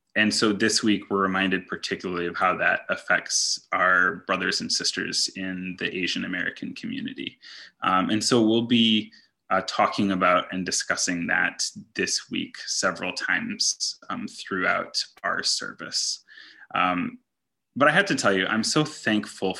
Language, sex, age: English, male, 20-39